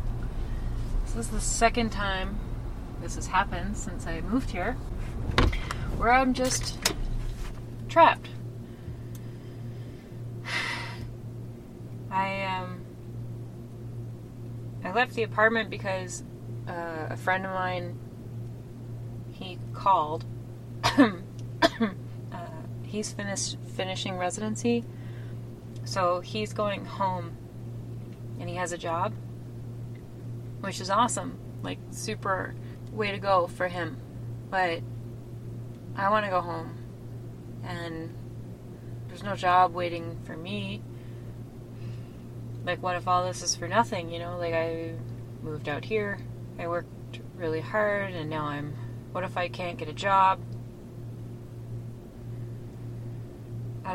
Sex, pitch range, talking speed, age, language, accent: female, 120-160 Hz, 110 wpm, 30-49, English, American